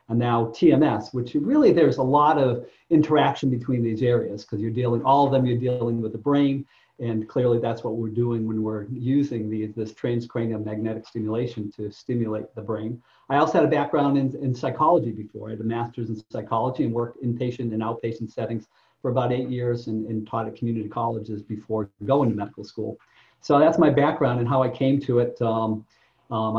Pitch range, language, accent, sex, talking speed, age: 110-130 Hz, English, American, male, 200 wpm, 40-59